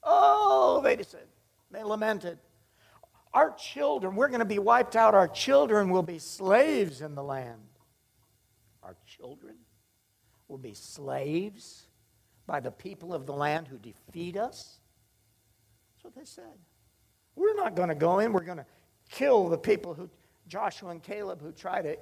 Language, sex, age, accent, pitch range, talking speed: English, male, 60-79, American, 110-180 Hz, 160 wpm